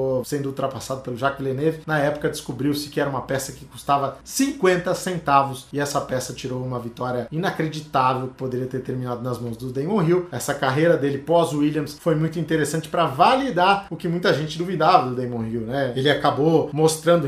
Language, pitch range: Portuguese, 145-175 Hz